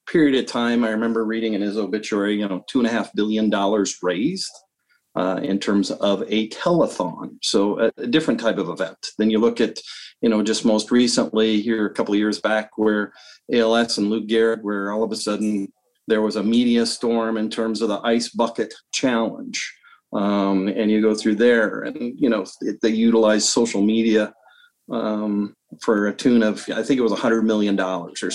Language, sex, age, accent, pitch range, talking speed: English, male, 40-59, American, 105-115 Hz, 205 wpm